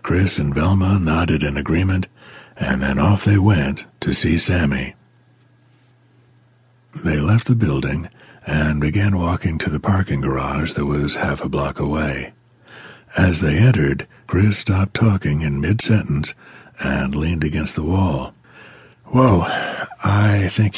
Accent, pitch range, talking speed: American, 75-115 Hz, 135 wpm